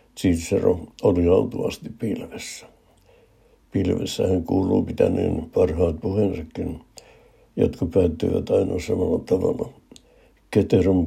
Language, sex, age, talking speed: Finnish, male, 60-79, 80 wpm